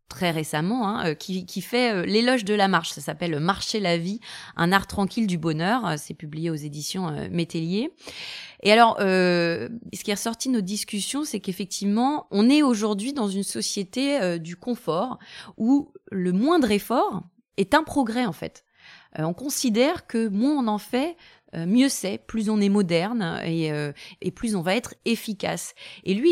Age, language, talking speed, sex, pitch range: 20-39, French, 195 wpm, female, 180-240 Hz